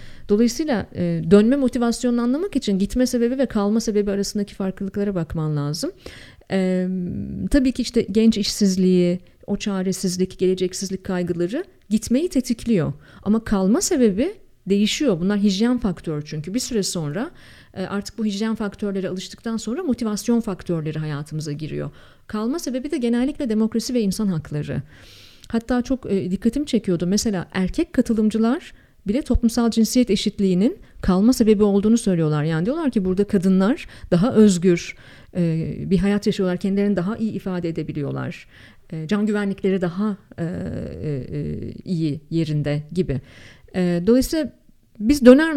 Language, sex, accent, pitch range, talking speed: Turkish, female, native, 180-235 Hz, 125 wpm